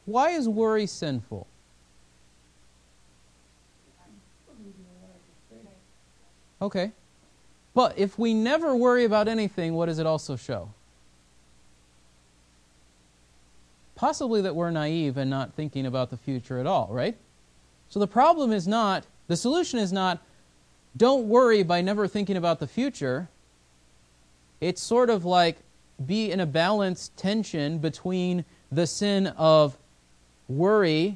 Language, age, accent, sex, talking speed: English, 30-49, American, male, 115 wpm